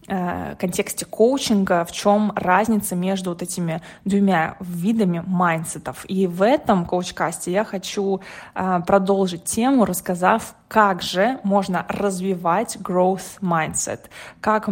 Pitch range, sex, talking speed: 180-210 Hz, female, 105 wpm